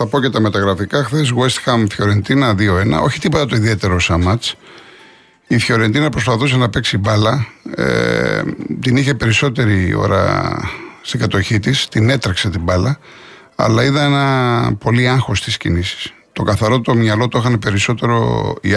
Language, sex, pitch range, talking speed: Greek, male, 105-130 Hz, 155 wpm